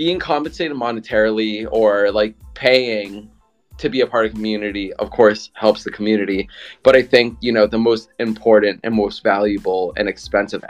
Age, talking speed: 20-39, 170 wpm